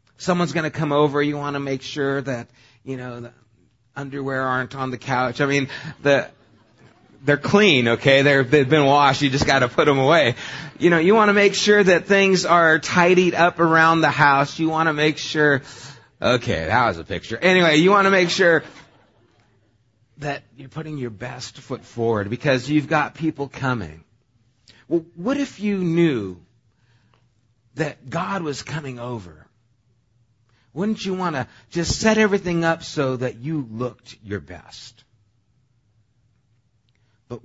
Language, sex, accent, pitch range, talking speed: English, male, American, 115-145 Hz, 165 wpm